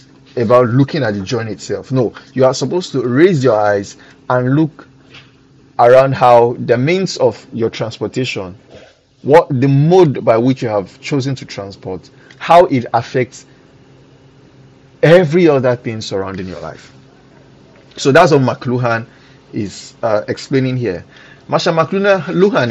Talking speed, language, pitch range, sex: 135 wpm, English, 105-135 Hz, male